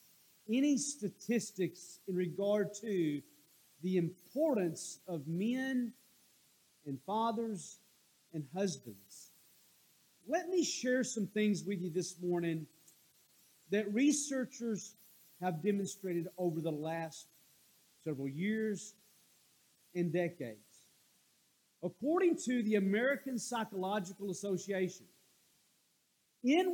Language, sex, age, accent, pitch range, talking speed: English, male, 50-69, American, 180-250 Hz, 90 wpm